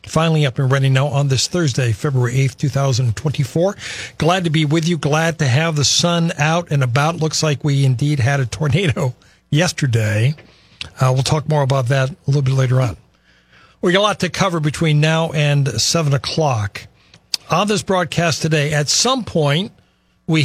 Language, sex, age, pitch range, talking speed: English, male, 50-69, 130-160 Hz, 180 wpm